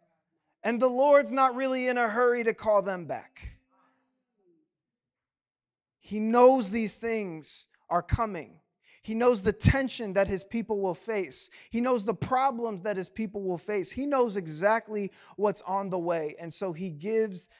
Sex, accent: male, American